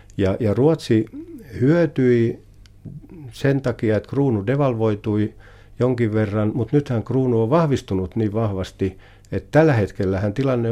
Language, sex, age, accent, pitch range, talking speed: Finnish, male, 60-79, native, 95-120 Hz, 125 wpm